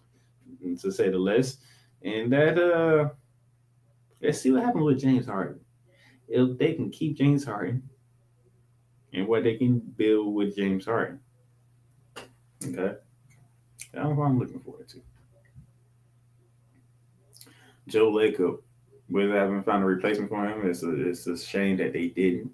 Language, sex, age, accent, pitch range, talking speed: English, male, 20-39, American, 100-125 Hz, 135 wpm